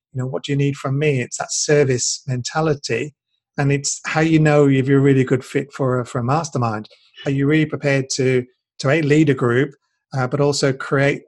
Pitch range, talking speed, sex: 130-150 Hz, 220 wpm, male